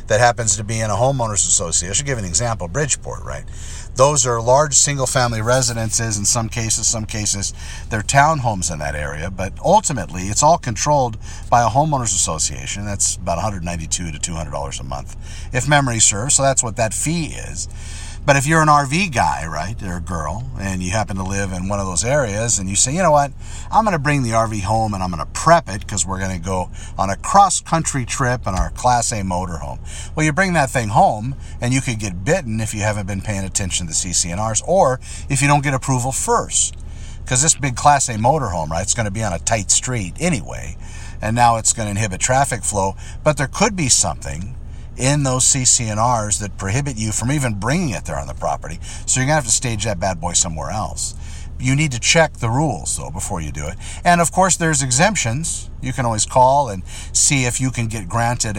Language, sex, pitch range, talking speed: English, male, 95-130 Hz, 220 wpm